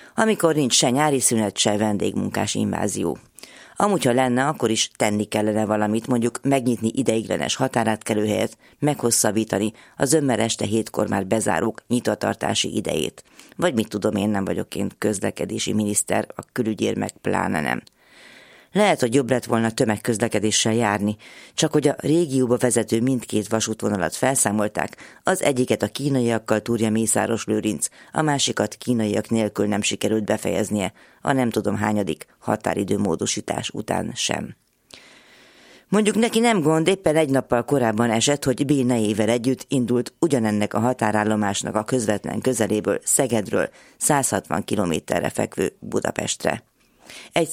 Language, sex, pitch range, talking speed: Hungarian, female, 105-130 Hz, 130 wpm